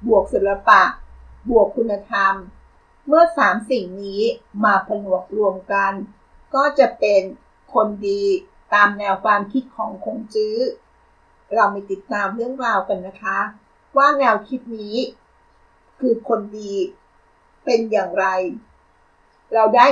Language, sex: Thai, female